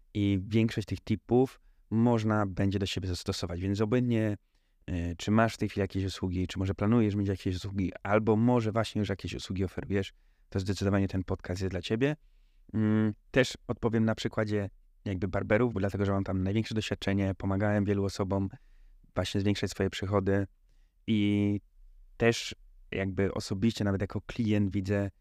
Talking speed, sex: 155 wpm, male